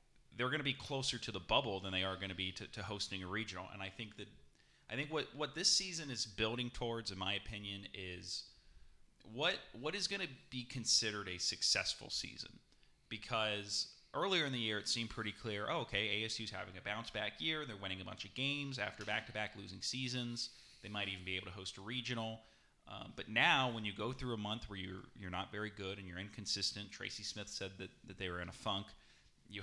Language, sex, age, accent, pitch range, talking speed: English, male, 30-49, American, 100-115 Hz, 230 wpm